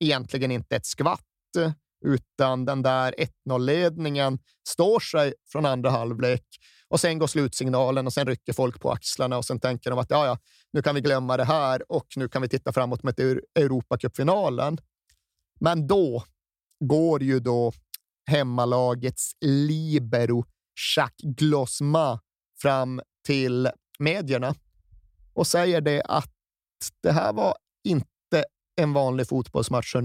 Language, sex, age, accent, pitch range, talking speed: Swedish, male, 30-49, native, 125-150 Hz, 130 wpm